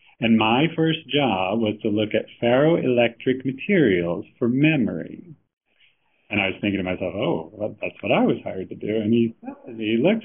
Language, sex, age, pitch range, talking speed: English, male, 40-59, 110-145 Hz, 175 wpm